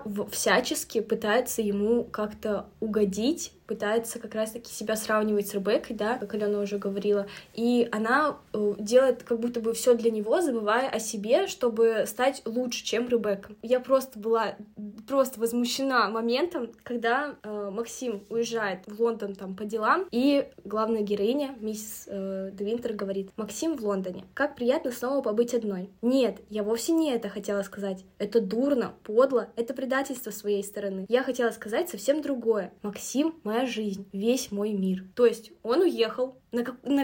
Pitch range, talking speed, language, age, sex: 210-250 Hz, 155 wpm, Russian, 10-29, female